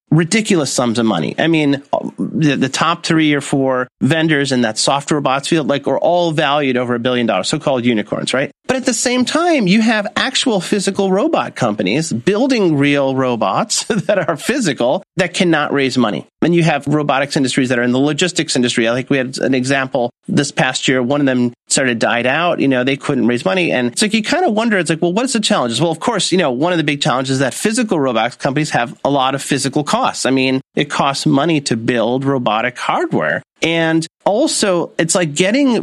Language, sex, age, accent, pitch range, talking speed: English, male, 30-49, American, 135-190 Hz, 220 wpm